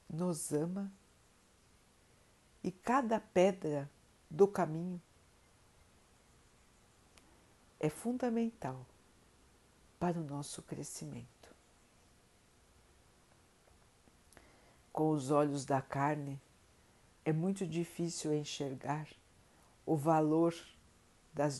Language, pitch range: Portuguese, 140-175 Hz